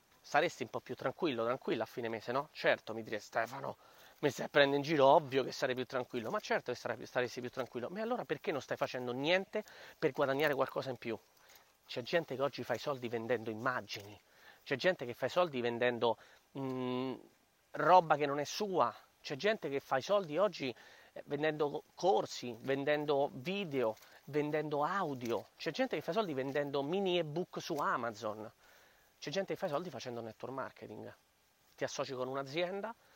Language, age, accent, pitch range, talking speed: Italian, 30-49, native, 130-170 Hz, 180 wpm